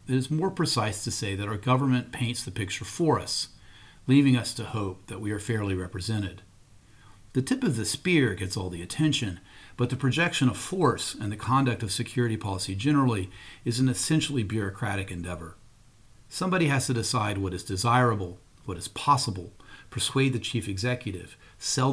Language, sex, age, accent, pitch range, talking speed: English, male, 40-59, American, 100-130 Hz, 175 wpm